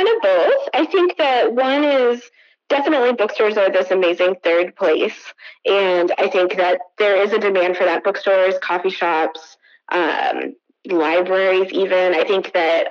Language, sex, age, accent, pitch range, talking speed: English, female, 20-39, American, 180-270 Hz, 155 wpm